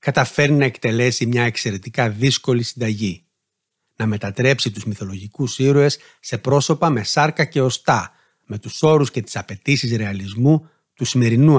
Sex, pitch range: male, 115-145 Hz